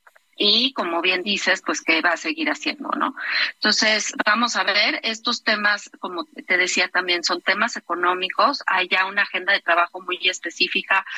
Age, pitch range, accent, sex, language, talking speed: 40-59, 175-225 Hz, Mexican, female, Spanish, 170 wpm